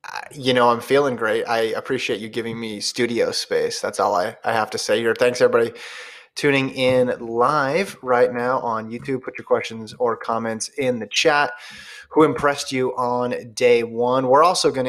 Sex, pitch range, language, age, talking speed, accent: male, 120-170 Hz, English, 20-39, 185 wpm, American